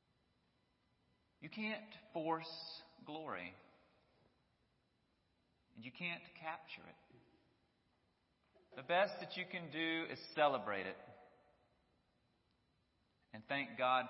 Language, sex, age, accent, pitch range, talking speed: English, male, 40-59, American, 110-145 Hz, 90 wpm